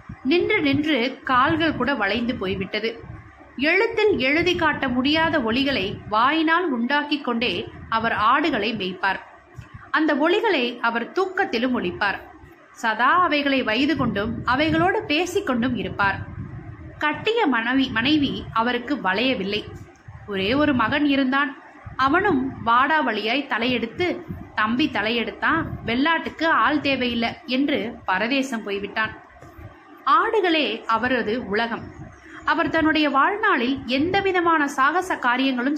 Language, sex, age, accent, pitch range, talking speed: Tamil, female, 20-39, native, 230-325 Hz, 100 wpm